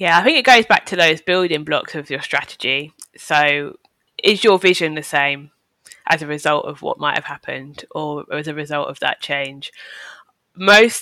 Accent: British